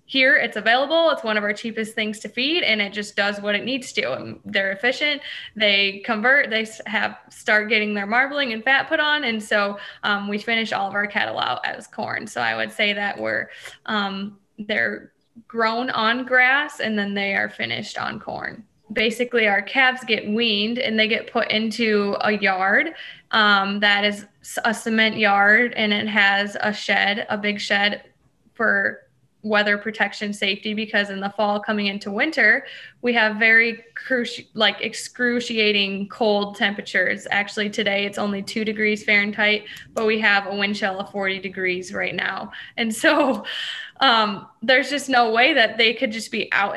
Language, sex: English, female